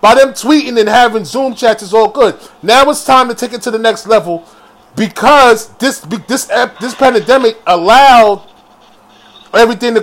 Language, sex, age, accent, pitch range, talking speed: English, male, 30-49, American, 220-275 Hz, 170 wpm